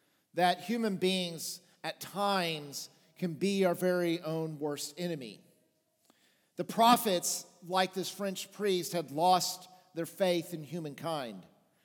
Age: 50-69